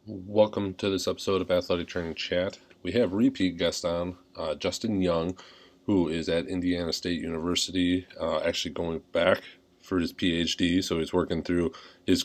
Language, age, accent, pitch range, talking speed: English, 30-49, American, 80-90 Hz, 165 wpm